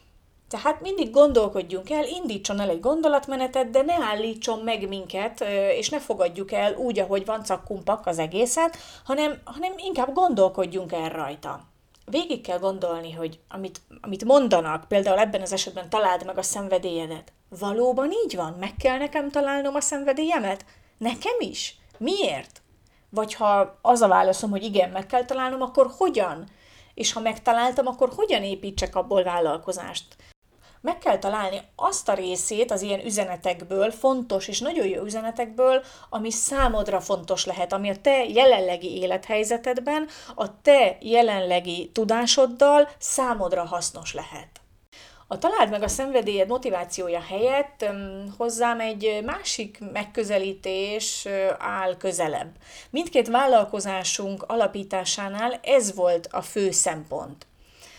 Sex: female